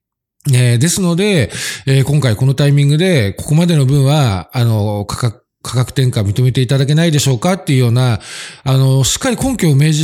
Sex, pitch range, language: male, 125-170 Hz, Japanese